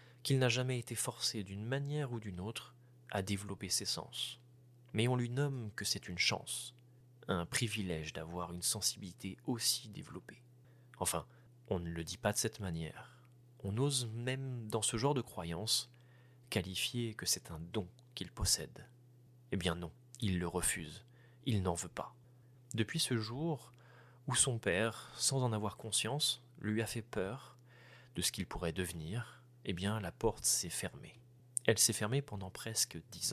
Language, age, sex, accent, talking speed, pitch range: French, 30-49, male, French, 170 wpm, 100-125 Hz